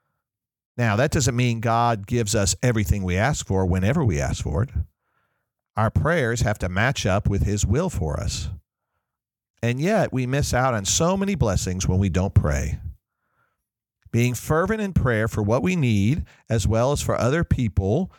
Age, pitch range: 50-69, 95-125 Hz